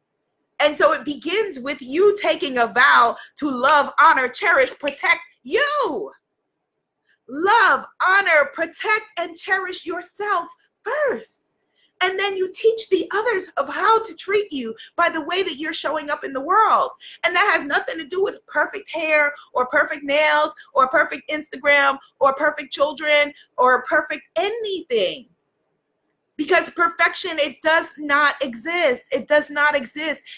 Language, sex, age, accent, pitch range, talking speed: English, female, 30-49, American, 255-345 Hz, 145 wpm